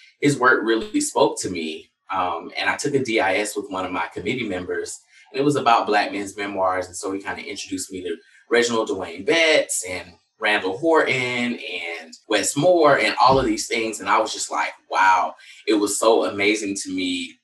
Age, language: 20-39, English